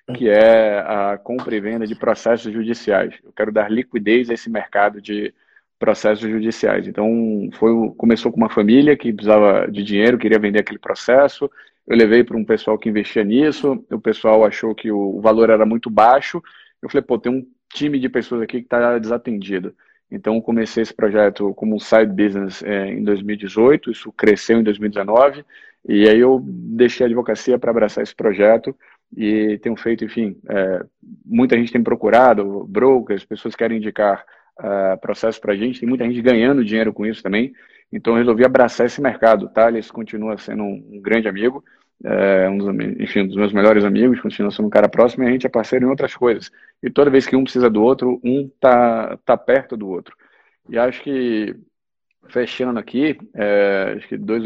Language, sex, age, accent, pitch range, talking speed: Portuguese, male, 40-59, Brazilian, 105-125 Hz, 190 wpm